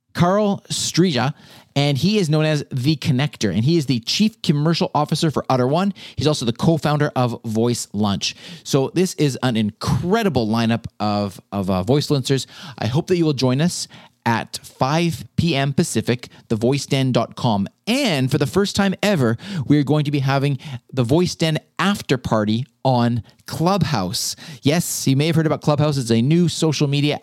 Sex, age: male, 30-49